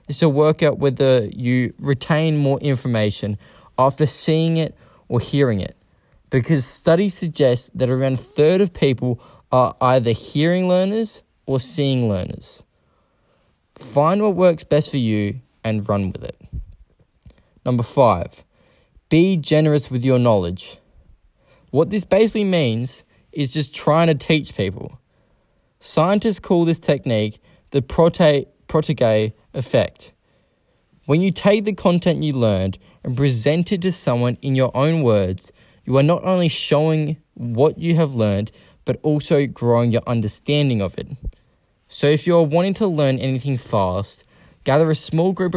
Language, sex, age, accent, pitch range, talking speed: English, male, 20-39, Australian, 115-160 Hz, 145 wpm